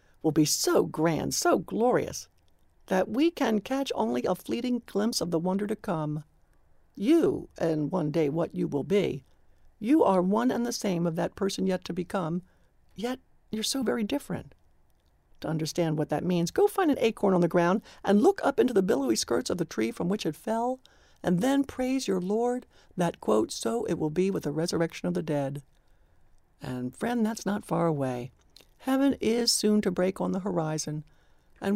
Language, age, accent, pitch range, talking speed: English, 60-79, American, 155-210 Hz, 195 wpm